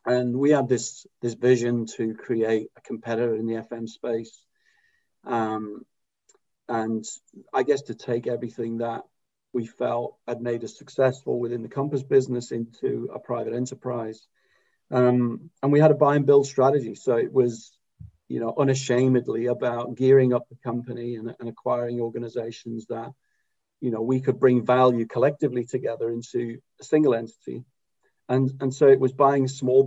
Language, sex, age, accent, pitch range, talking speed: English, male, 40-59, British, 120-135 Hz, 160 wpm